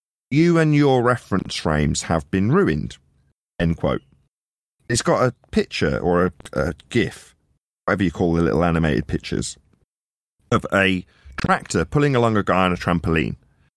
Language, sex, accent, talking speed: English, male, British, 155 wpm